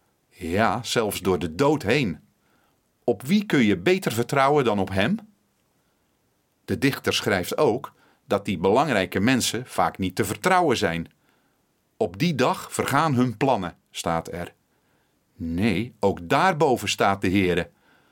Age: 40-59